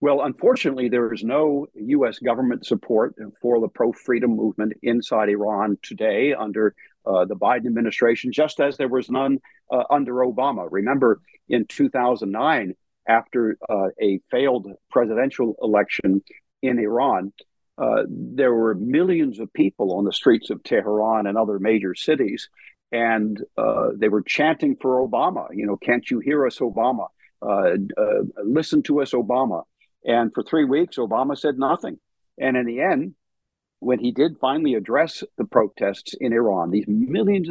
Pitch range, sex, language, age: 110-140 Hz, male, English, 50-69